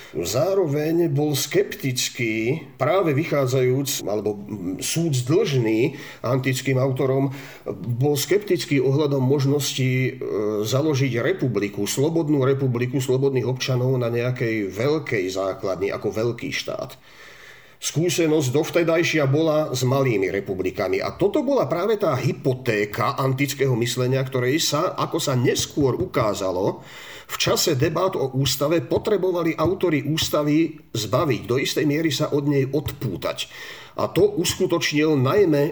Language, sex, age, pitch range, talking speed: Slovak, male, 40-59, 130-160 Hz, 115 wpm